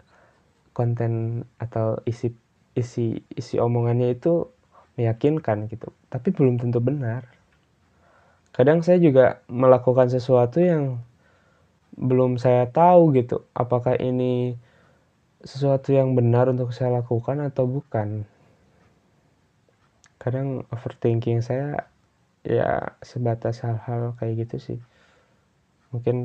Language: Indonesian